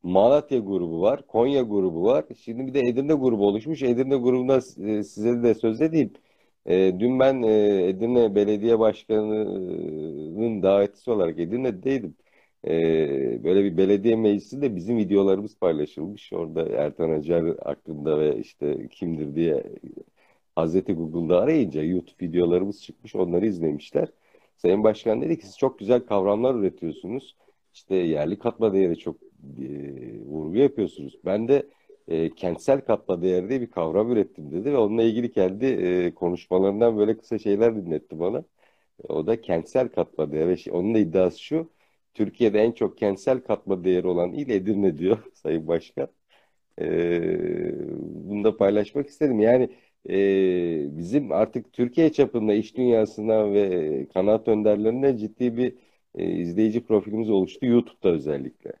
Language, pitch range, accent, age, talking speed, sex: Turkish, 95-120 Hz, native, 50-69, 140 wpm, male